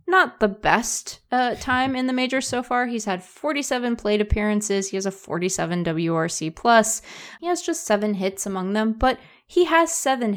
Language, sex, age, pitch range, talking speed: English, female, 20-39, 190-250 Hz, 185 wpm